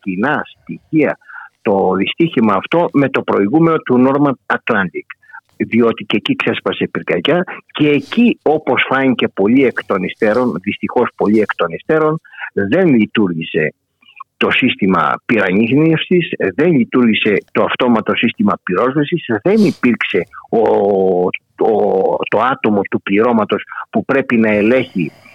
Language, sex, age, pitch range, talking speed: Greek, male, 50-69, 105-150 Hz, 125 wpm